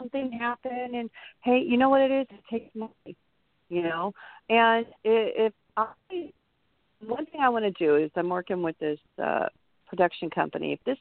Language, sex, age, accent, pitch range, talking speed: English, female, 50-69, American, 160-225 Hz, 185 wpm